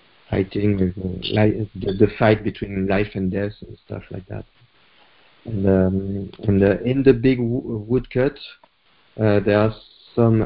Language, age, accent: English, 50-69, French